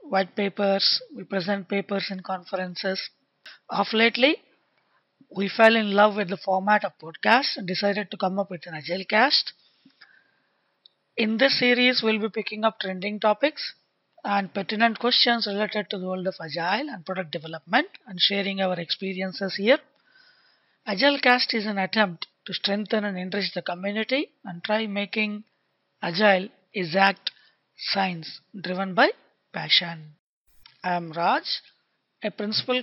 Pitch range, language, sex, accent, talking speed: 195-235 Hz, English, female, Indian, 145 wpm